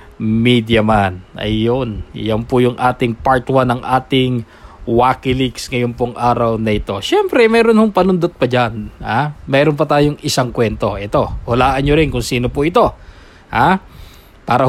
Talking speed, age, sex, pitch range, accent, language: 160 wpm, 20-39, male, 120-170 Hz, Filipino, English